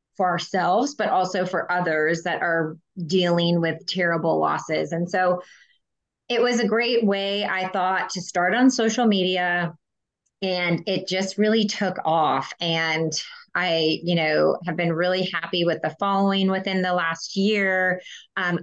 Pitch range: 180-215 Hz